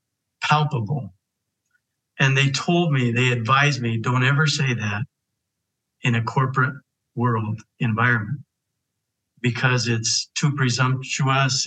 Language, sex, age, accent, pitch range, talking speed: English, male, 60-79, American, 120-140 Hz, 110 wpm